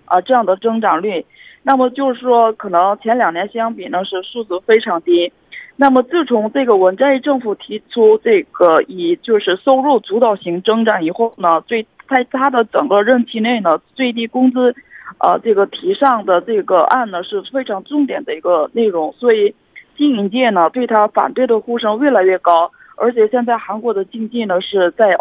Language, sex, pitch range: Korean, female, 195-260 Hz